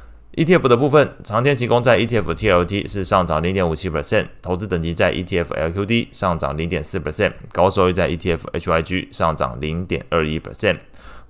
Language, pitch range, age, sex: Chinese, 80-95 Hz, 20-39, male